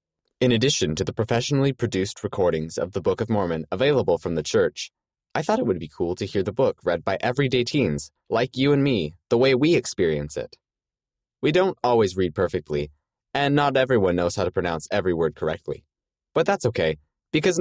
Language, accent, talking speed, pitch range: English, American, 200 wpm, 85-130 Hz